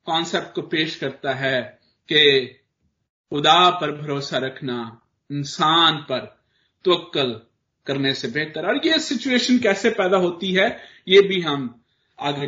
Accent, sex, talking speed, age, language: native, male, 130 wpm, 50-69, Hindi